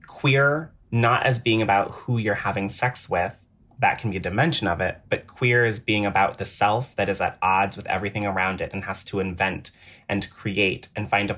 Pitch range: 95-110 Hz